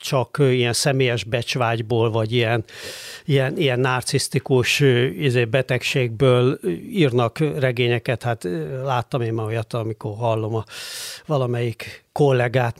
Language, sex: Hungarian, male